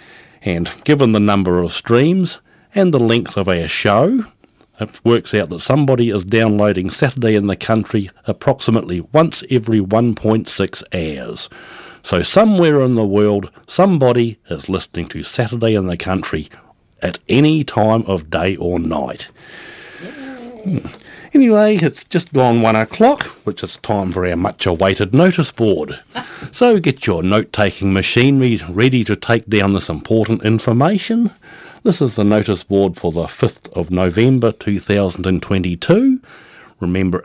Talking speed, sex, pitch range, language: 140 wpm, male, 95-135 Hz, English